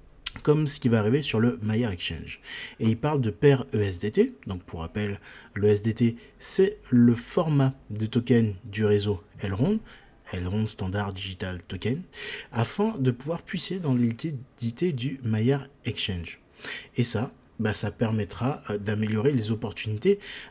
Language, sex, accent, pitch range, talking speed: French, male, French, 105-135 Hz, 145 wpm